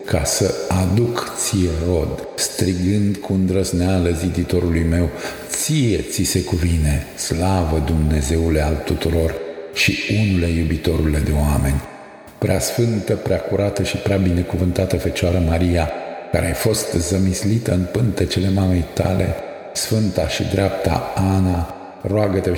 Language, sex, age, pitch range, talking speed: Romanian, male, 50-69, 80-95 Hz, 110 wpm